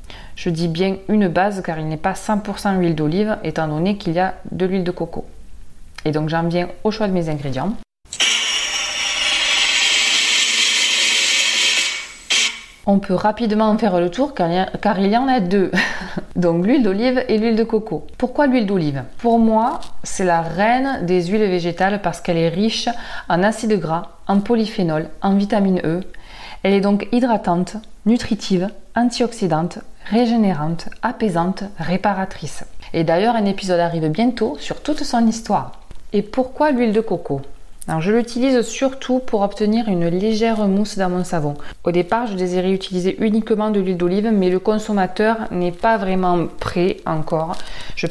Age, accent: 20-39, French